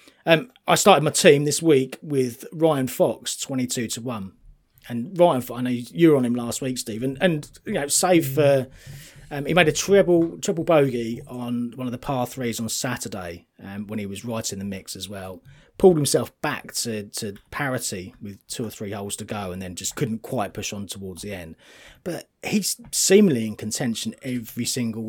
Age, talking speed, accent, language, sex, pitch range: 30-49, 205 wpm, British, English, male, 105-150 Hz